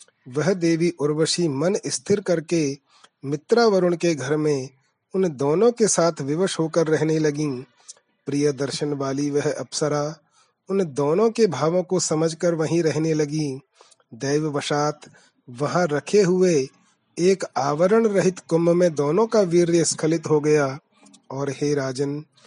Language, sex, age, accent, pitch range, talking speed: Hindi, male, 30-49, native, 145-180 Hz, 140 wpm